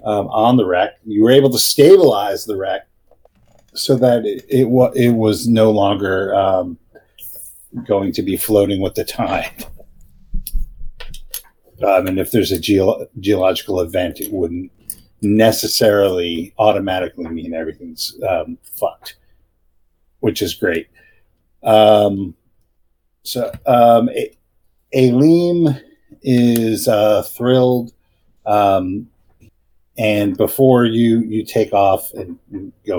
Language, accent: English, American